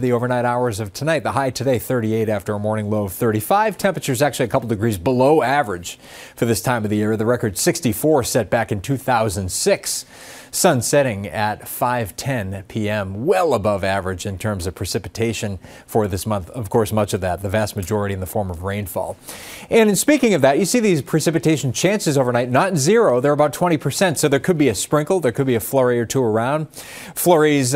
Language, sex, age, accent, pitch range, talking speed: English, male, 30-49, American, 105-140 Hz, 205 wpm